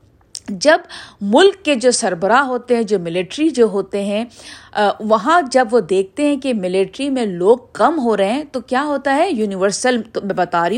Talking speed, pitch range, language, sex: 195 wpm, 205-290 Hz, Urdu, female